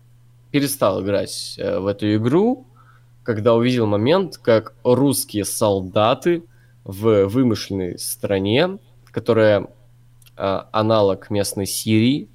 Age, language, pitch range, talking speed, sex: 20-39, Russian, 100-120 Hz, 95 wpm, male